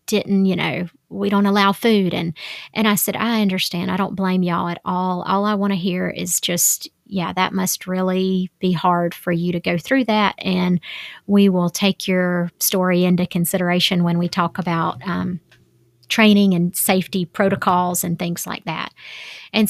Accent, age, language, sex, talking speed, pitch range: American, 30-49, English, female, 185 wpm, 180-215 Hz